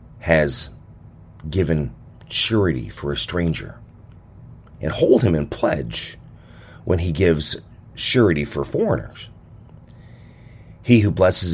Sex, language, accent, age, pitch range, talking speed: male, English, American, 40-59, 80-120 Hz, 105 wpm